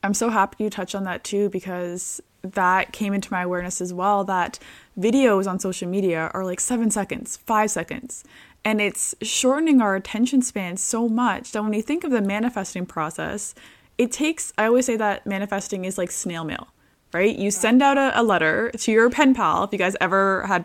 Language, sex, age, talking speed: English, female, 20-39, 200 wpm